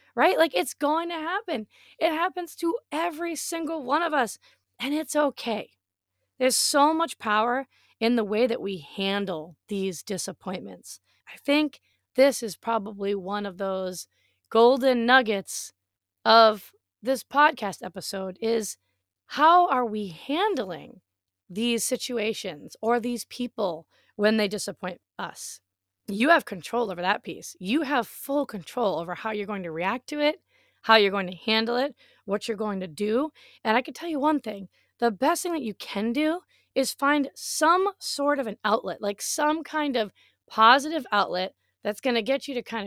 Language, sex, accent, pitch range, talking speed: English, female, American, 195-280 Hz, 170 wpm